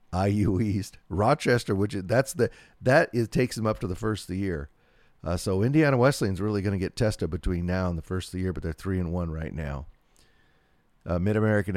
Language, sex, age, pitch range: English, male, 40-59, 90-105 Hz